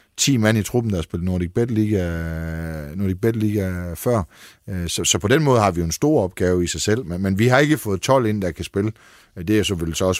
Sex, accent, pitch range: male, native, 90-115 Hz